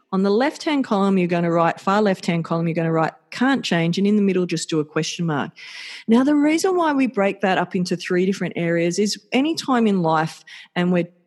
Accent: Australian